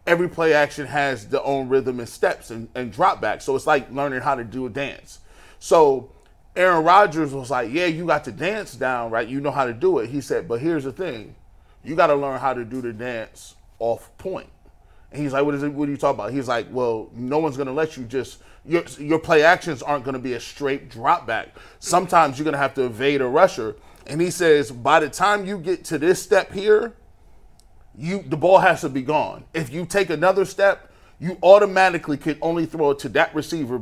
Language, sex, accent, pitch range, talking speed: English, male, American, 135-175 Hz, 235 wpm